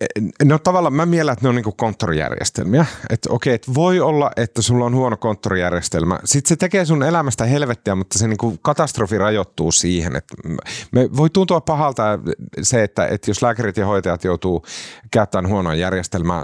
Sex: male